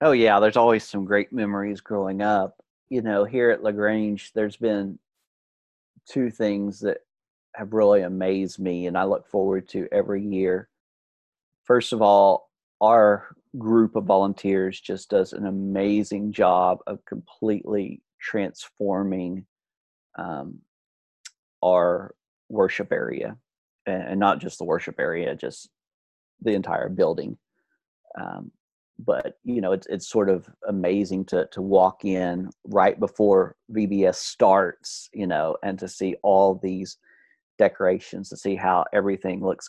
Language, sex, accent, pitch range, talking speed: English, male, American, 95-105 Hz, 135 wpm